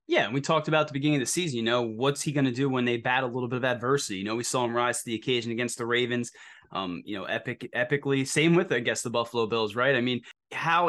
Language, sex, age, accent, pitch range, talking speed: English, male, 20-39, American, 125-155 Hz, 285 wpm